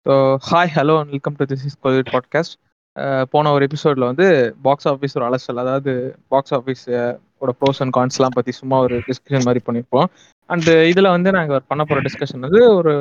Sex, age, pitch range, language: male, 20-39, 130-155 Hz, Tamil